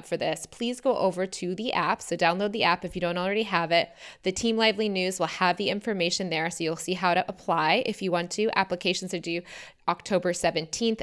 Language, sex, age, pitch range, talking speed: English, female, 20-39, 170-200 Hz, 230 wpm